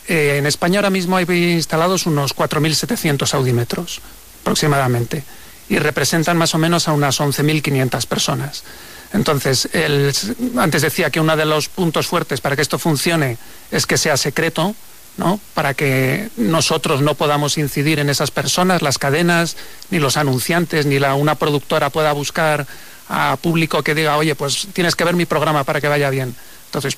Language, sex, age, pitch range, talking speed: Spanish, male, 40-59, 145-170 Hz, 165 wpm